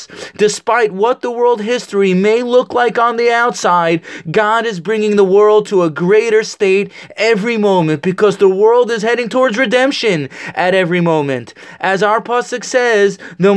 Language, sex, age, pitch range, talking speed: English, male, 20-39, 185-230 Hz, 165 wpm